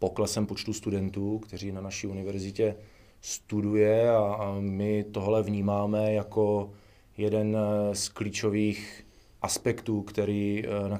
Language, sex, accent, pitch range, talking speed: Czech, male, native, 100-110 Hz, 100 wpm